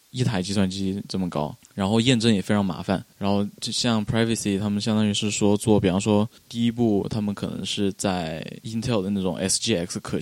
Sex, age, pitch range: male, 20-39, 100-115 Hz